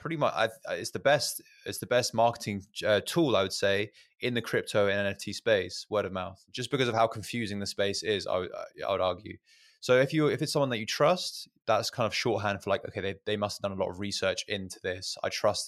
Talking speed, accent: 255 wpm, British